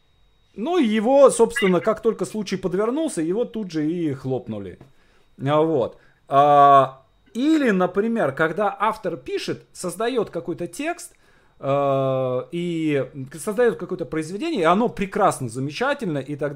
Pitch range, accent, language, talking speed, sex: 130-200 Hz, native, Russian, 110 wpm, male